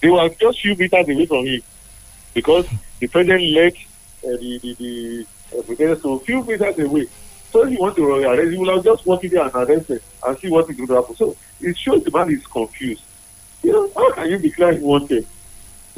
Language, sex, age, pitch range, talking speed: English, male, 50-69, 130-195 Hz, 220 wpm